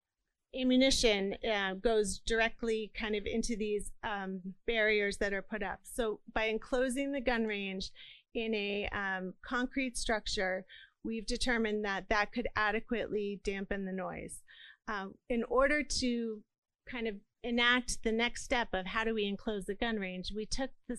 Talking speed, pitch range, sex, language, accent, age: 155 wpm, 210-240 Hz, female, English, American, 30-49